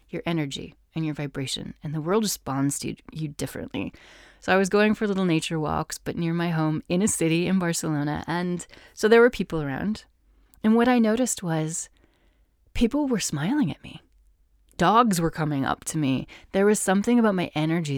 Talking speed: 190 wpm